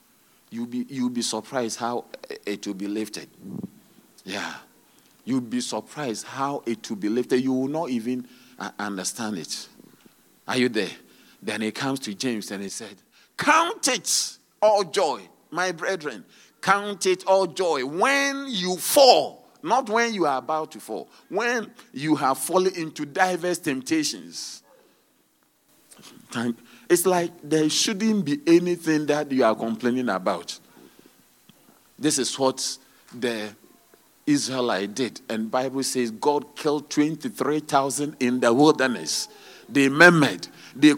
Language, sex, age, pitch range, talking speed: English, male, 50-69, 120-175 Hz, 140 wpm